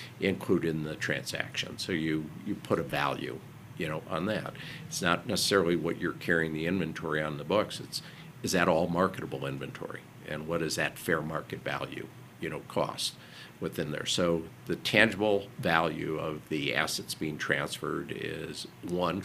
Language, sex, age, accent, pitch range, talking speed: English, male, 50-69, American, 80-95 Hz, 170 wpm